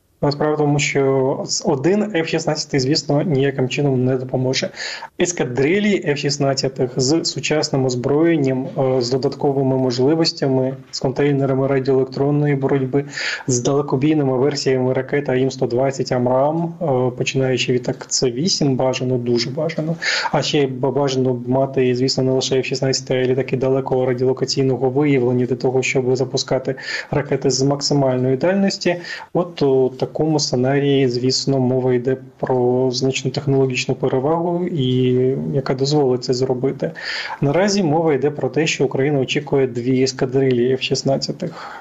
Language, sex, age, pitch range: Ukrainian, male, 20-39, 130-150 Hz